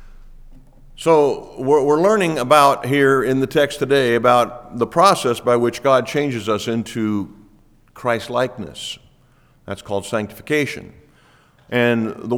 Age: 50-69